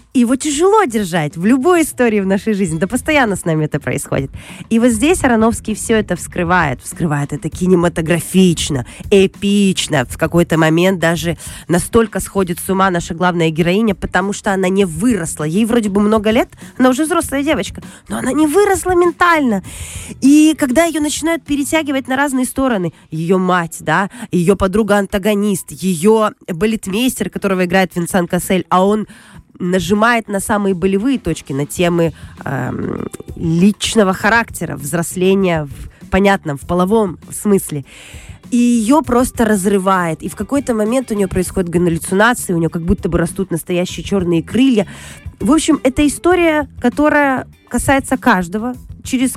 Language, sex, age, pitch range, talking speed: Russian, female, 20-39, 175-250 Hz, 150 wpm